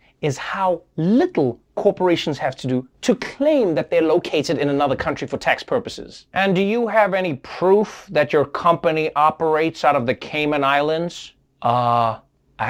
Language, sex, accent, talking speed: English, male, American, 165 wpm